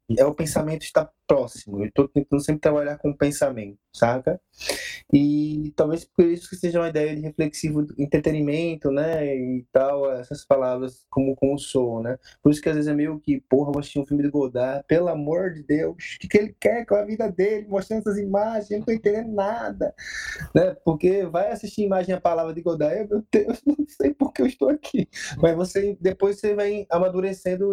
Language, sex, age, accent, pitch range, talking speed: Portuguese, male, 20-39, Brazilian, 140-190 Hz, 195 wpm